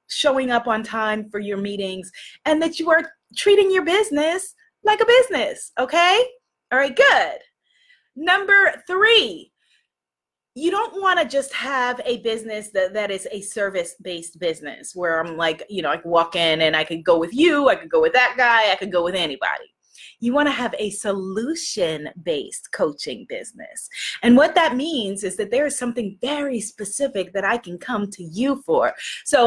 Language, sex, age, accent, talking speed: English, female, 20-39, American, 180 wpm